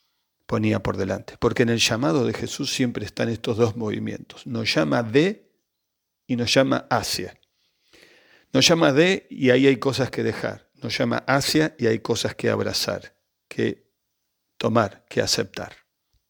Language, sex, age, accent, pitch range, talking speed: Spanish, male, 50-69, Argentinian, 115-140 Hz, 155 wpm